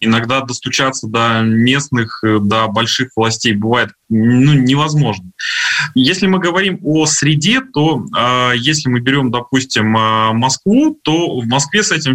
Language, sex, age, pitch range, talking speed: Russian, male, 20-39, 125-160 Hz, 130 wpm